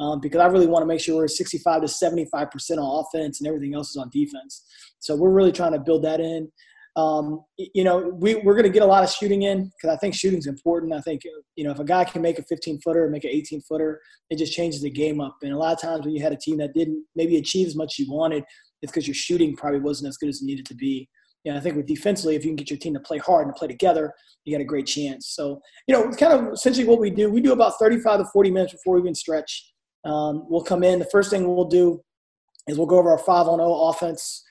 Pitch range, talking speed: 155-185 Hz, 285 wpm